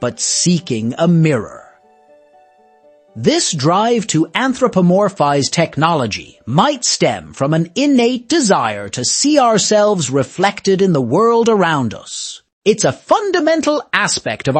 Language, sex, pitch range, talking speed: English, male, 145-240 Hz, 120 wpm